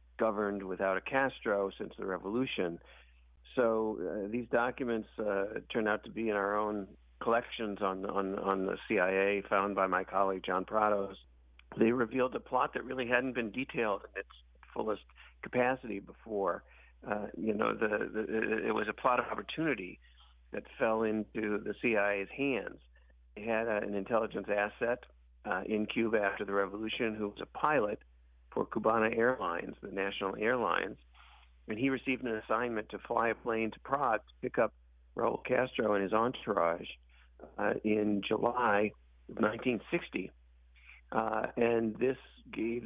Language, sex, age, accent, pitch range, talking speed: English, male, 50-69, American, 95-120 Hz, 155 wpm